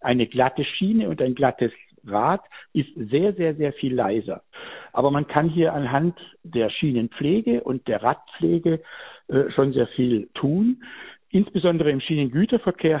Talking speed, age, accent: 140 wpm, 60-79, German